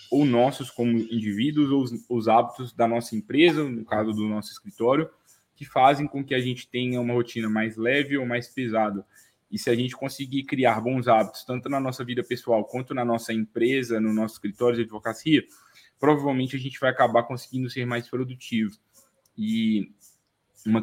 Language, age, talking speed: Portuguese, 10-29, 180 wpm